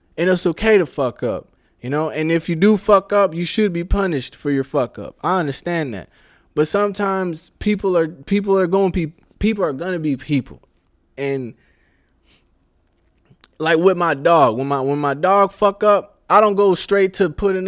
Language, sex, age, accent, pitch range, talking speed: English, male, 20-39, American, 135-195 Hz, 190 wpm